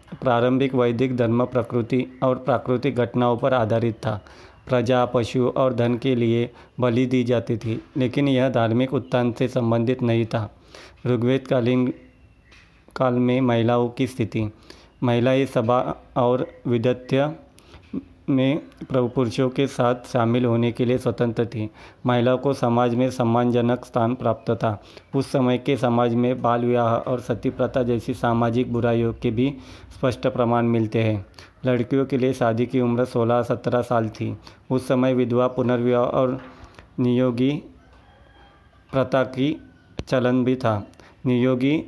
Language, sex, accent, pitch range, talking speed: Hindi, male, native, 115-130 Hz, 140 wpm